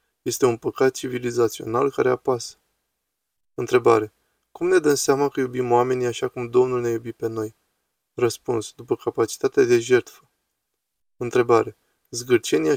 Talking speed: 130 wpm